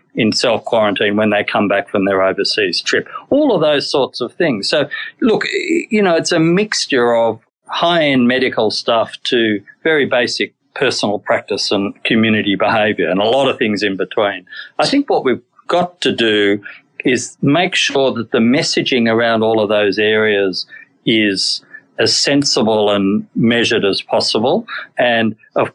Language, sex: English, male